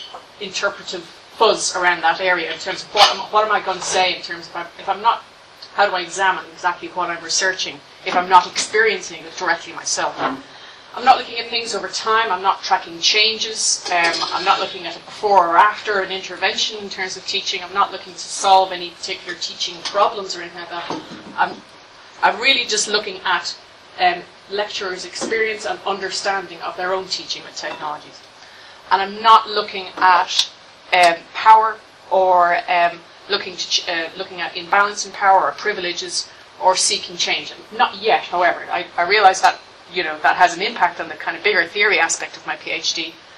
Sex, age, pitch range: female, 30-49, 180-205 Hz